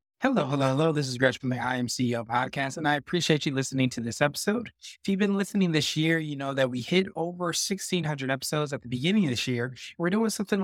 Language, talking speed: English, 245 wpm